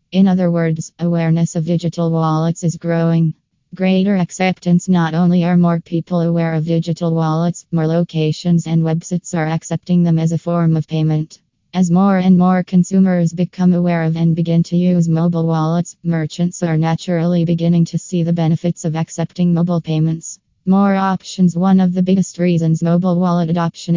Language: English